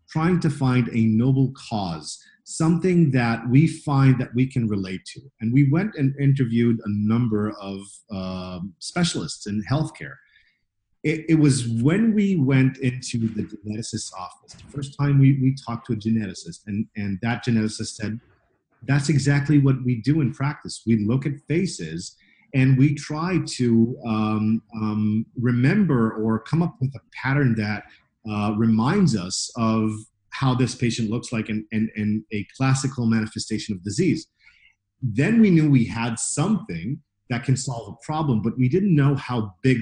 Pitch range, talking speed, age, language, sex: 110-140 Hz, 165 wpm, 40-59, English, male